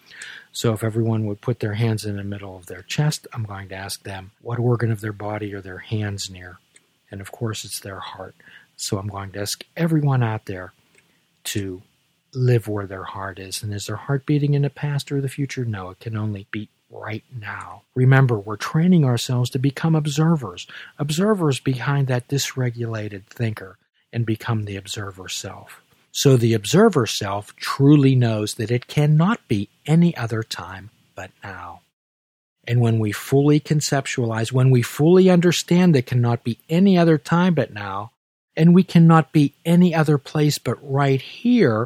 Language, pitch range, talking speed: English, 105-145 Hz, 180 wpm